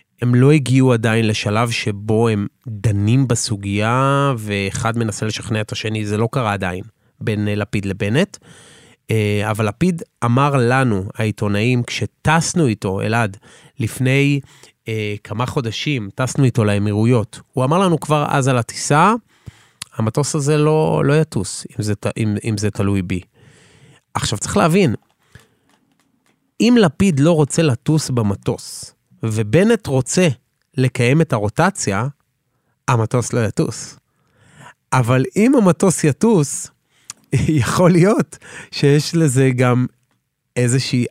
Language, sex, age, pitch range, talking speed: Hebrew, male, 30-49, 110-145 Hz, 120 wpm